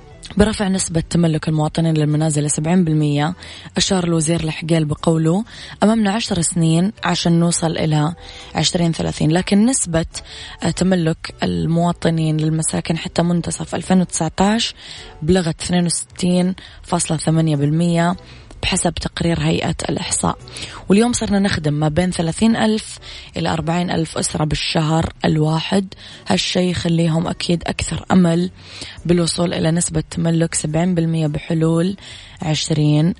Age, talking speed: 20-39, 110 wpm